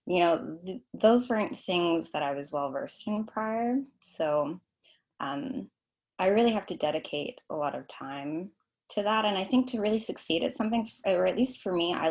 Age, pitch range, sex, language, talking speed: 20-39, 155-220 Hz, female, English, 195 wpm